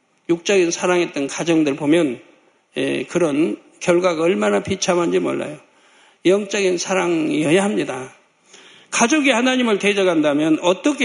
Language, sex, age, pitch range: Korean, male, 60-79, 175-235 Hz